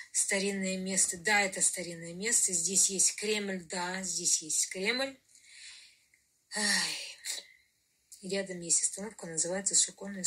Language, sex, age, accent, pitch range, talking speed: Russian, female, 20-39, native, 175-210 Hz, 105 wpm